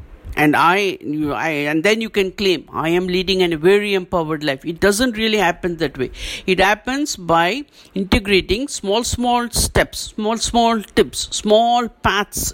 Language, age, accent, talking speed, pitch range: English, 60-79, Indian, 160 wpm, 170-240 Hz